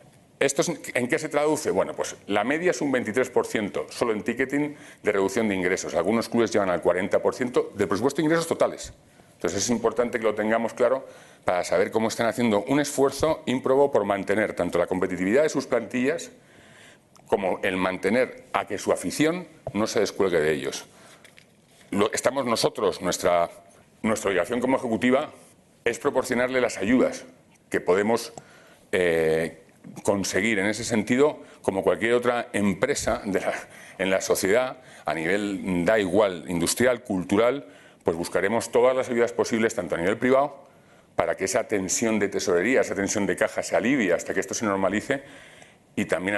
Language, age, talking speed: Spanish, 40-59, 165 wpm